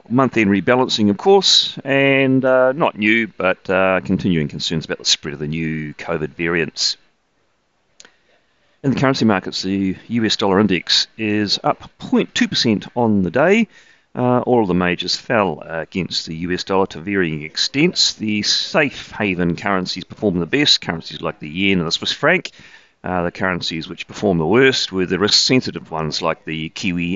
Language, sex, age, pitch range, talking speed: English, male, 40-59, 85-120 Hz, 170 wpm